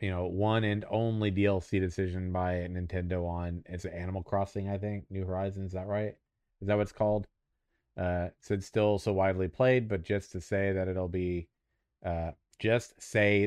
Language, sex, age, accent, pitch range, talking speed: English, male, 30-49, American, 90-105 Hz, 185 wpm